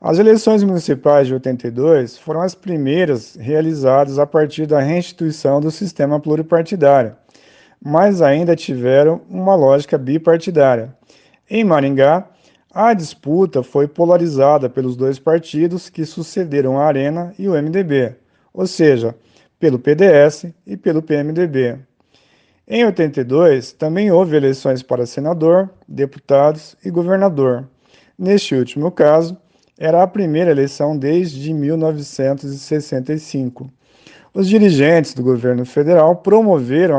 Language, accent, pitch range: Portuguese, Brazilian, 135-175 Hz